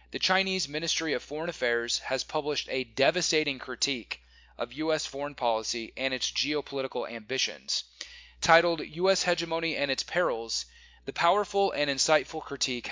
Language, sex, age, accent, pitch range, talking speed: English, male, 30-49, American, 135-170 Hz, 140 wpm